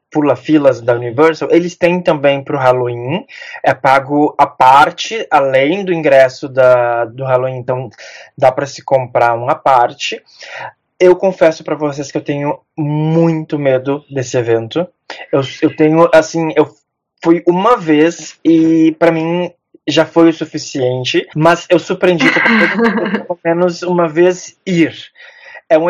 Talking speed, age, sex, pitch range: 155 wpm, 20-39, male, 140-175 Hz